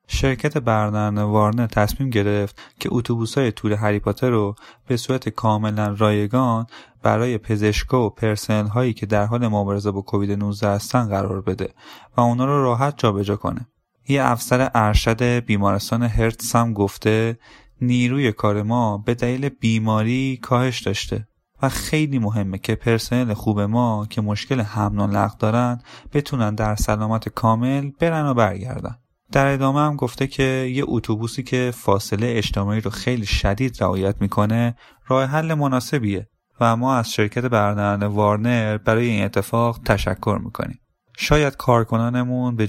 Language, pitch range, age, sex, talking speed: Persian, 105-125 Hz, 20-39, male, 140 wpm